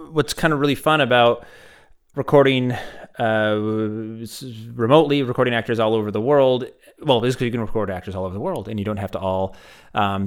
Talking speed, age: 185 wpm, 30-49